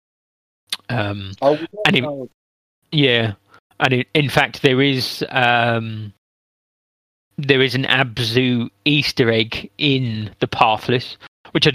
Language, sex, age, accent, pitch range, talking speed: English, male, 20-39, British, 105-130 Hz, 105 wpm